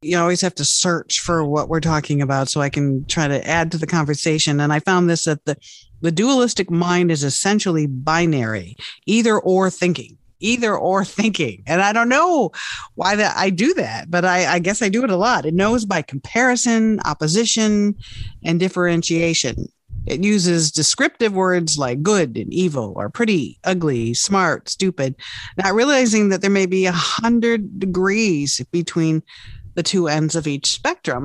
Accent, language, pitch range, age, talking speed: American, English, 155-200 Hz, 50-69, 175 wpm